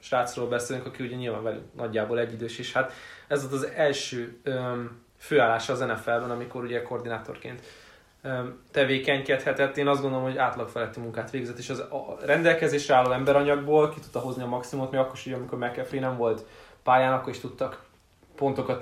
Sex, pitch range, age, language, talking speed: male, 120-135 Hz, 20-39, Hungarian, 170 wpm